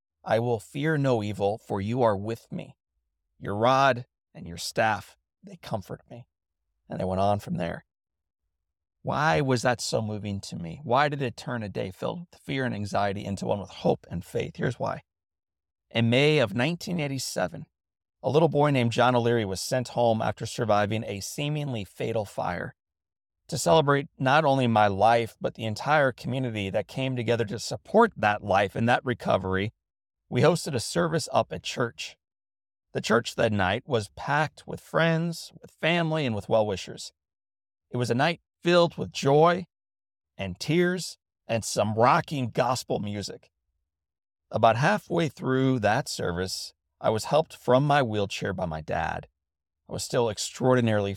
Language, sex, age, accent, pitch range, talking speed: English, male, 30-49, American, 95-140 Hz, 165 wpm